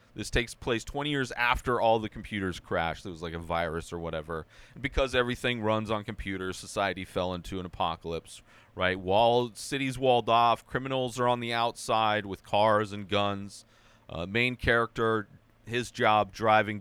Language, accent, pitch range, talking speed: English, American, 105-130 Hz, 170 wpm